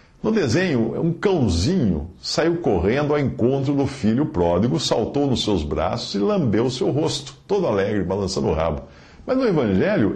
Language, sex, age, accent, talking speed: Portuguese, male, 60-79, Brazilian, 160 wpm